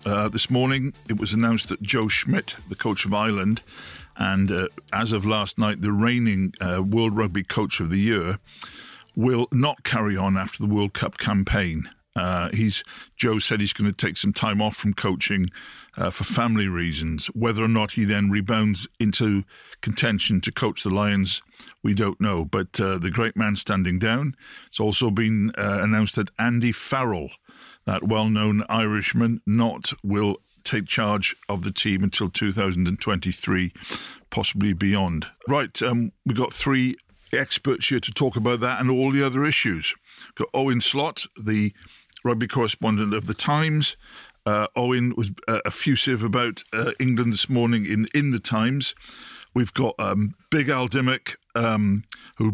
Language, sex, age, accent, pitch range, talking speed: English, male, 50-69, British, 100-120 Hz, 165 wpm